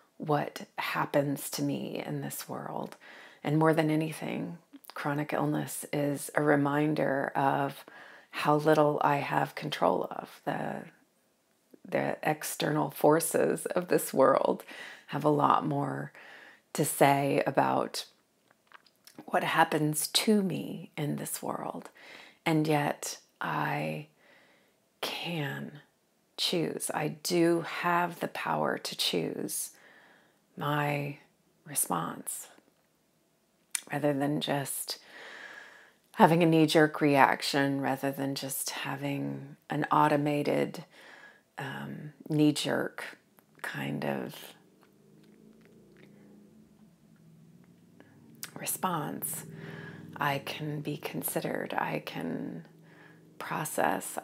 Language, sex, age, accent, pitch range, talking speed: English, female, 30-49, American, 140-170 Hz, 90 wpm